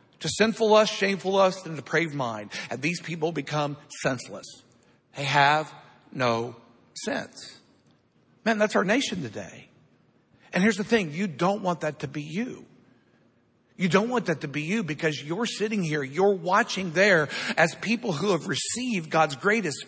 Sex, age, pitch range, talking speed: male, 50-69, 165-235 Hz, 165 wpm